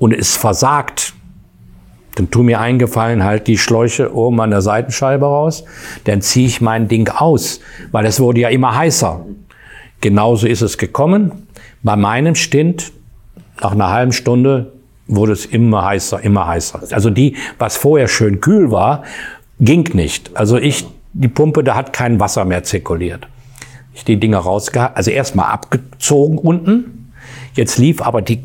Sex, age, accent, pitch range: male, 50-69, German, 105-130 Hz